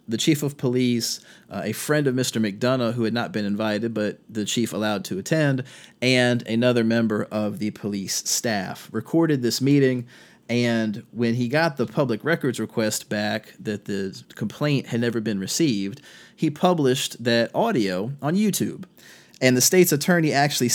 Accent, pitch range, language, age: American, 110-135 Hz, English, 30-49